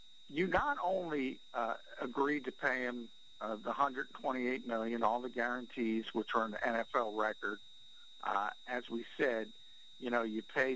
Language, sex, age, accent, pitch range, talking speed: English, male, 50-69, American, 115-135 Hz, 160 wpm